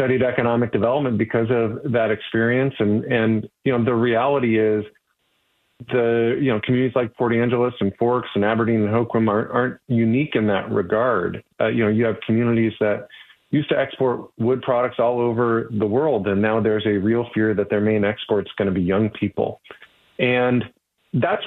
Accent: American